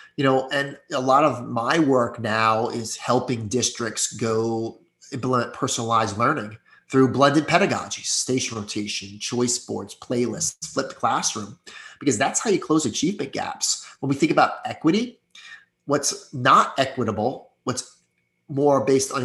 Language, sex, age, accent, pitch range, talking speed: English, male, 30-49, American, 115-145 Hz, 140 wpm